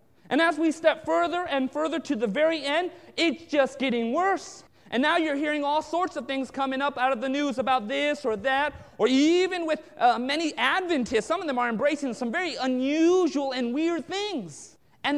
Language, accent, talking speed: English, American, 200 wpm